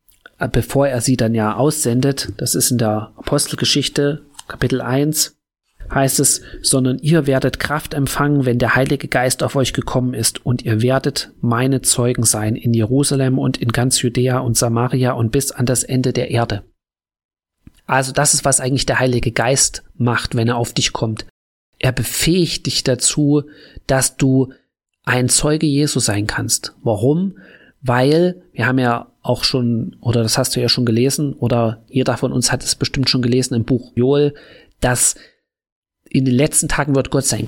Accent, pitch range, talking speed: German, 120-140 Hz, 175 wpm